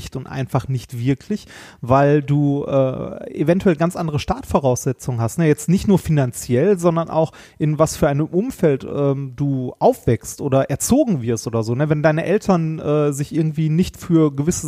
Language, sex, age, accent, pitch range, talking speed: German, male, 30-49, German, 130-170 Hz, 170 wpm